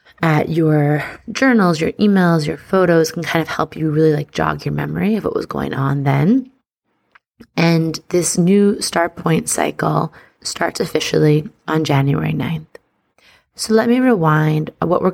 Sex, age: female, 30-49